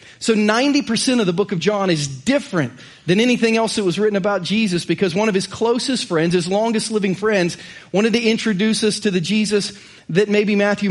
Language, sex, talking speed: English, male, 205 wpm